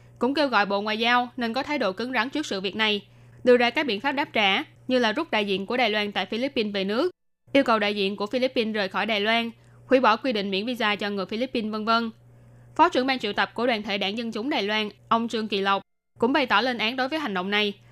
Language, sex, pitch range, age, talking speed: Vietnamese, female, 205-255 Hz, 10-29, 280 wpm